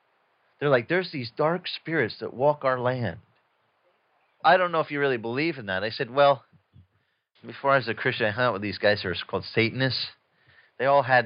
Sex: male